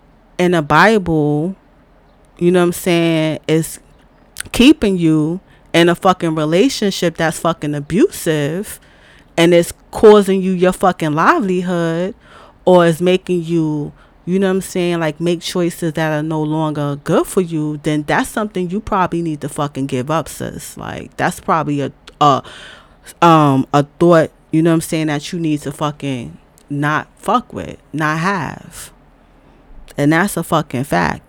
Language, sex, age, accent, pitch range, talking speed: English, female, 20-39, American, 140-170 Hz, 160 wpm